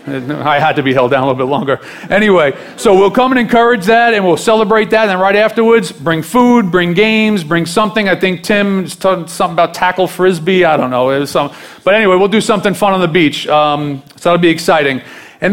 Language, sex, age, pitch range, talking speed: English, male, 40-59, 155-190 Hz, 230 wpm